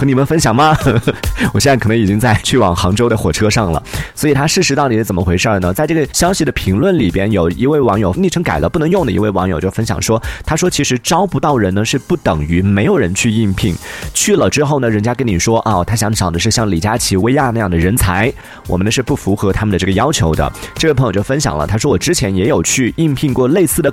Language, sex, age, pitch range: Chinese, male, 30-49, 95-130 Hz